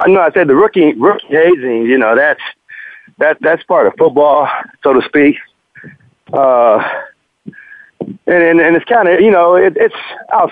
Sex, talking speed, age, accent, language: male, 160 wpm, 40-59, American, English